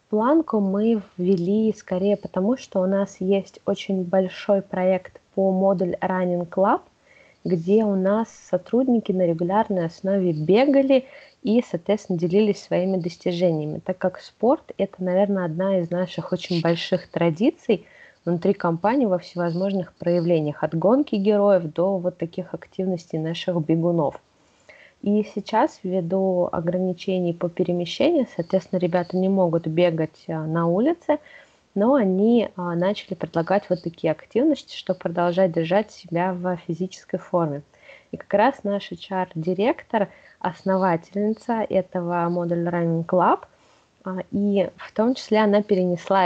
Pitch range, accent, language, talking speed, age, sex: 175-205 Hz, native, Russian, 125 wpm, 20-39, female